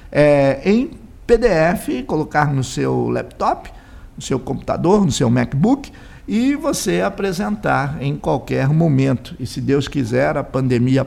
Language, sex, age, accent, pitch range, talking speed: Portuguese, male, 50-69, Brazilian, 135-190 Hz, 130 wpm